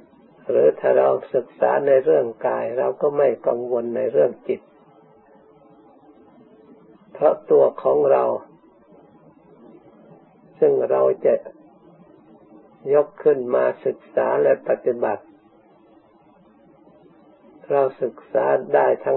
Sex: male